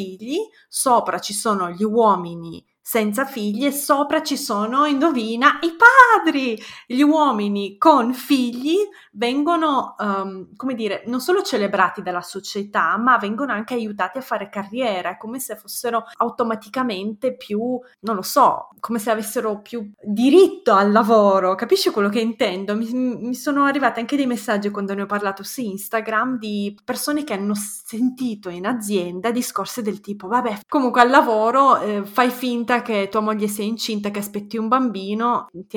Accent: native